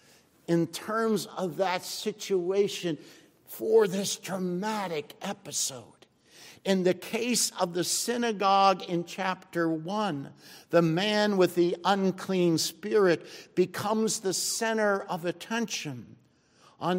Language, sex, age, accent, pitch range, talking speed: English, male, 60-79, American, 170-220 Hz, 105 wpm